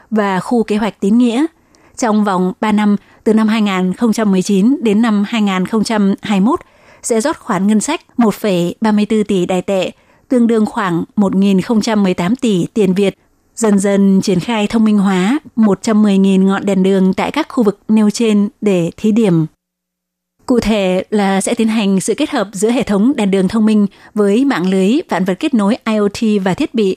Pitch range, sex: 195-225 Hz, female